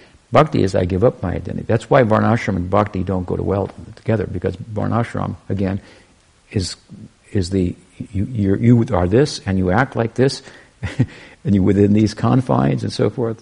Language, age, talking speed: English, 60-79, 185 wpm